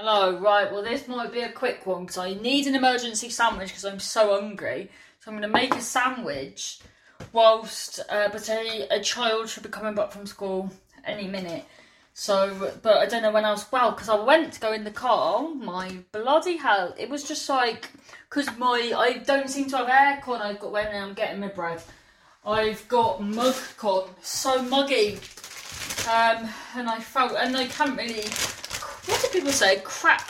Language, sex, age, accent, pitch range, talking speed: English, female, 30-49, British, 210-295 Hz, 195 wpm